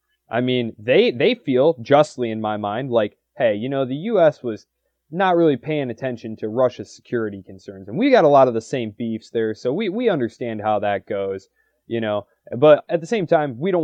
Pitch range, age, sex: 105-130 Hz, 20-39, male